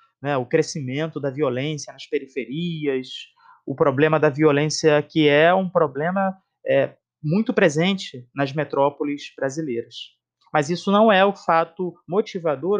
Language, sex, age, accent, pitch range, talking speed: Portuguese, male, 30-49, Brazilian, 155-220 Hz, 125 wpm